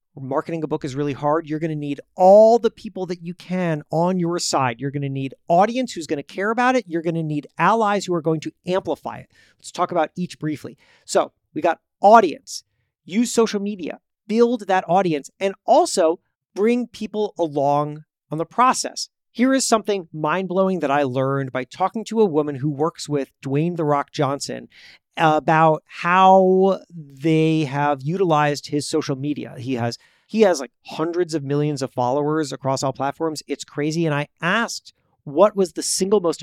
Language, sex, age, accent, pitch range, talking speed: English, male, 40-59, American, 145-195 Hz, 190 wpm